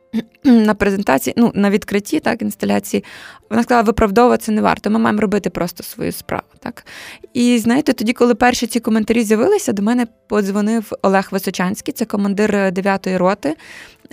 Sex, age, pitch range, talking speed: female, 20-39, 195-230 Hz, 155 wpm